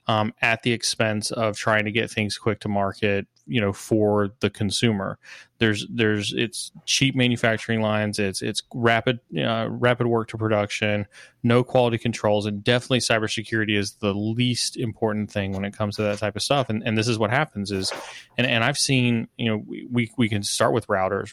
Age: 20-39